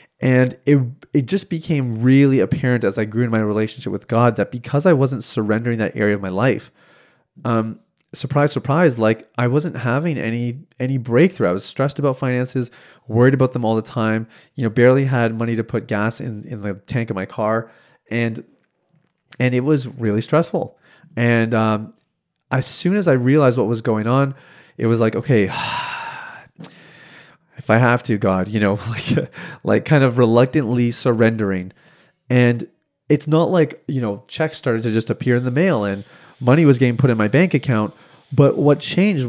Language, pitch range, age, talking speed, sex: English, 115-145 Hz, 30-49, 185 wpm, male